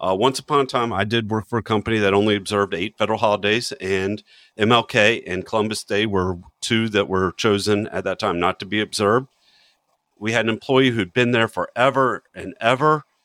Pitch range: 100-125 Hz